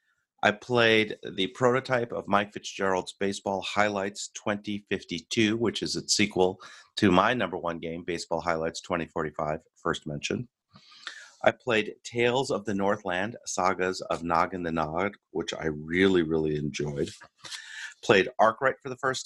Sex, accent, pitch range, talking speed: male, American, 90-115 Hz, 145 wpm